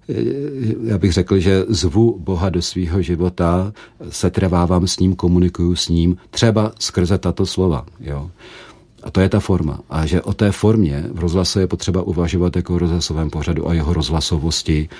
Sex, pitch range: male, 85-95 Hz